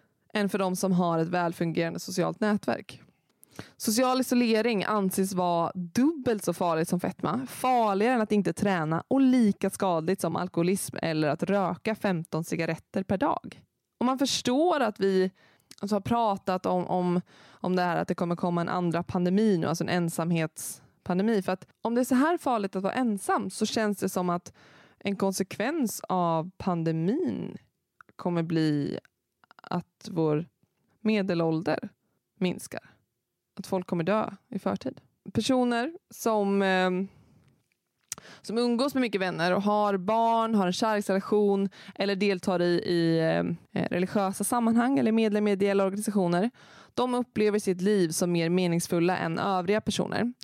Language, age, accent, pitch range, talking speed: Swedish, 20-39, native, 175-215 Hz, 145 wpm